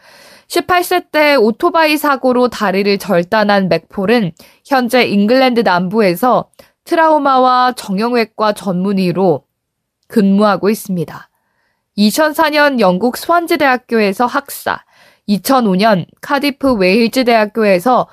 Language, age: Korean, 20-39